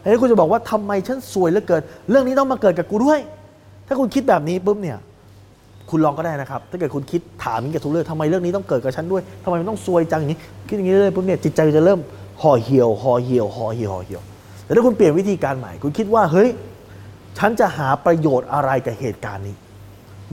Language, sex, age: Thai, male, 20-39